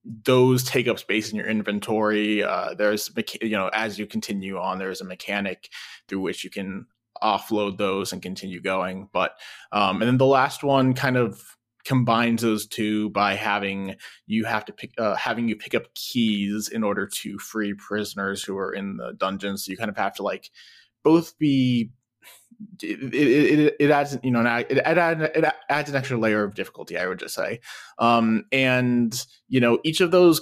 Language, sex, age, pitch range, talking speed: English, male, 20-39, 105-125 Hz, 190 wpm